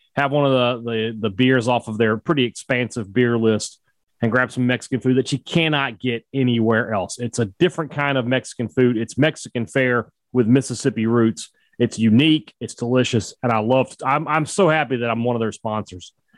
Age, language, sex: 30-49, English, male